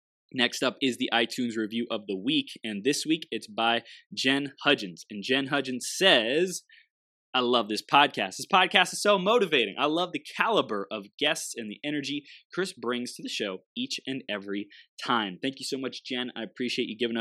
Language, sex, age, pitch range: English, male, 20-39, 110-145 Hz